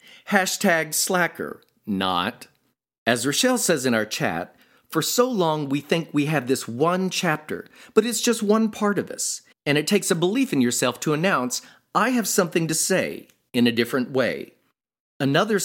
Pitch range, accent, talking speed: 130-200 Hz, American, 175 wpm